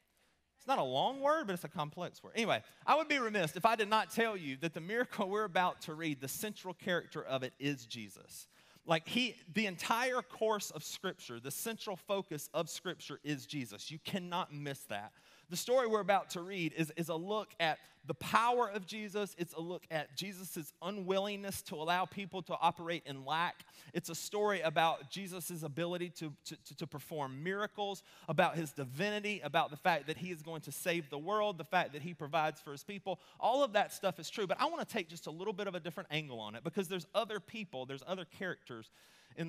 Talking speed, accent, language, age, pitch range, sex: 220 wpm, American, English, 30-49, 155-200 Hz, male